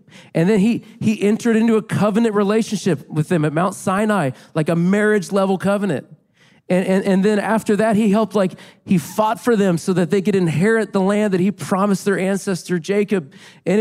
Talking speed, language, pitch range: 195 wpm, English, 155-200 Hz